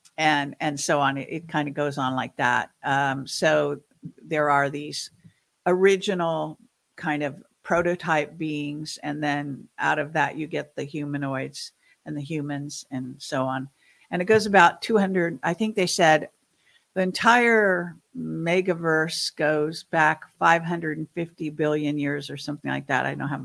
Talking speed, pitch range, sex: 155 wpm, 145-175 Hz, female